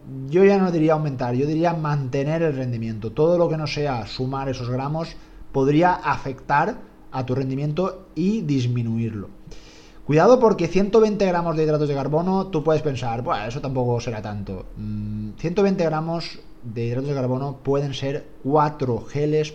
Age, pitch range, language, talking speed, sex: 30-49, 125-160 Hz, Spanish, 155 wpm, male